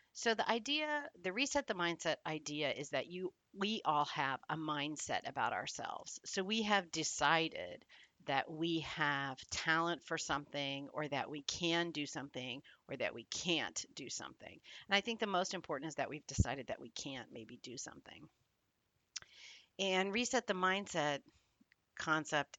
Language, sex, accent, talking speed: English, female, American, 160 wpm